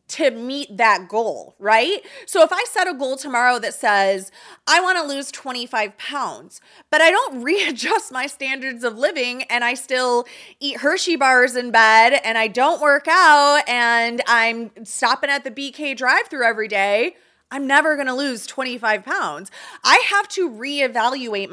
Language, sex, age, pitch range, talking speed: English, female, 30-49, 220-290 Hz, 170 wpm